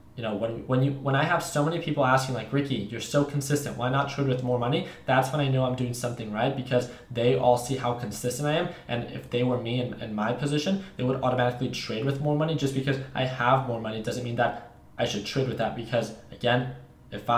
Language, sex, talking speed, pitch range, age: English, male, 250 wpm, 115-135 Hz, 20-39